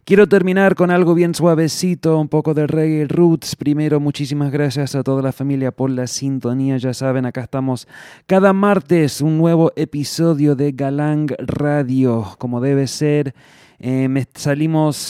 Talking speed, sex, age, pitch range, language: 150 wpm, male, 20-39, 120-145 Hz, English